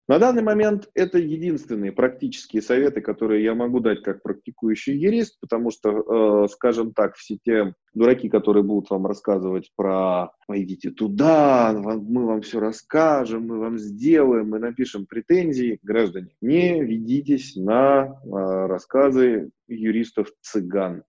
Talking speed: 130 wpm